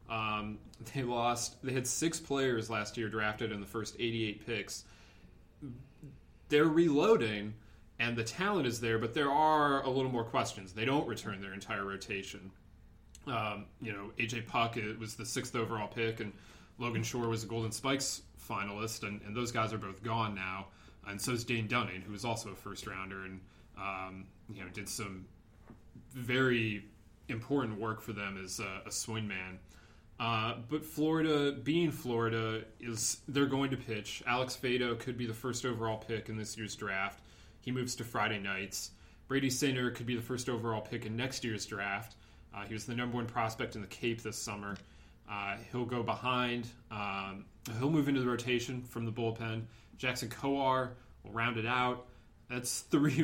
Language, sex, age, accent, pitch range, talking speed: English, male, 30-49, American, 105-125 Hz, 180 wpm